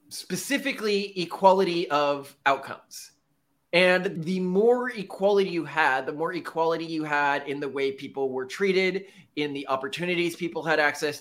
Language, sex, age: English, male, 30-49